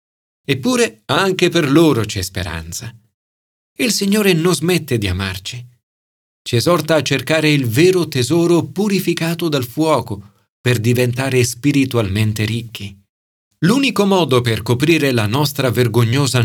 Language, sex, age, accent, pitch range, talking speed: Italian, male, 40-59, native, 105-165 Hz, 120 wpm